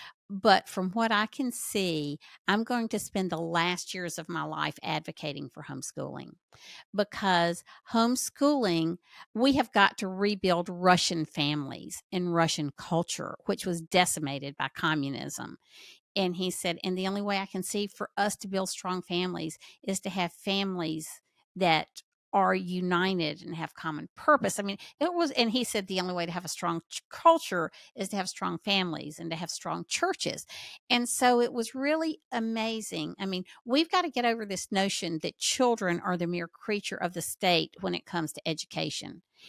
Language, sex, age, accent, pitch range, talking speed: English, female, 50-69, American, 175-230 Hz, 180 wpm